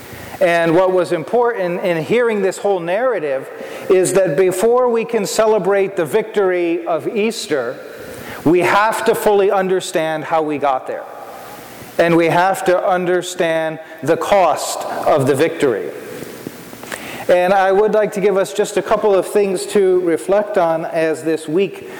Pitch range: 170-210 Hz